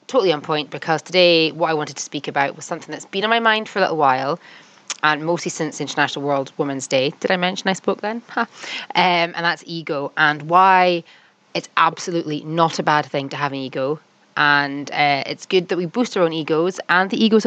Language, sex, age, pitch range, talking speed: English, female, 20-39, 145-185 Hz, 220 wpm